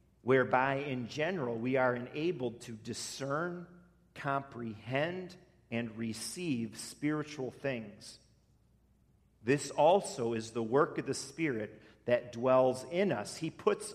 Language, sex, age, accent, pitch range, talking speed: English, male, 40-59, American, 115-155 Hz, 115 wpm